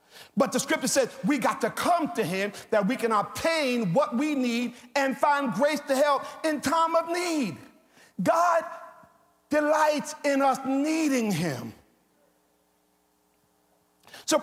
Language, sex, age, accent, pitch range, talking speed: English, male, 50-69, American, 200-280 Hz, 135 wpm